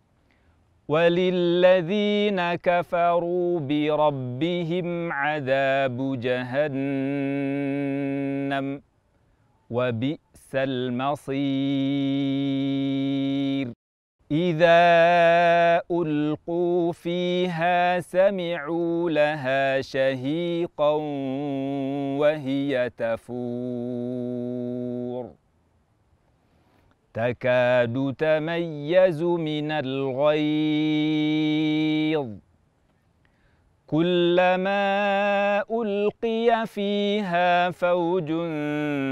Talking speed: 30 wpm